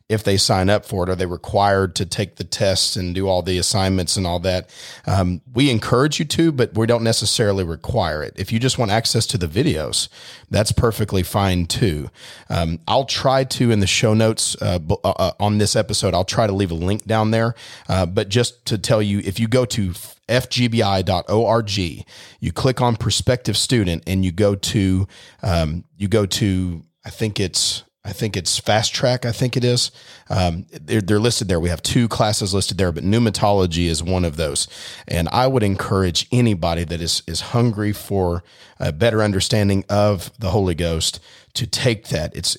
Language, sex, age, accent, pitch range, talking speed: English, male, 40-59, American, 90-115 Hz, 195 wpm